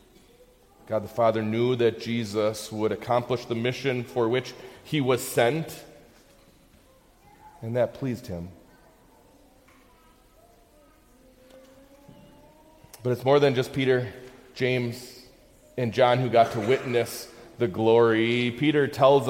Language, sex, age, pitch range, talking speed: English, male, 30-49, 120-170 Hz, 110 wpm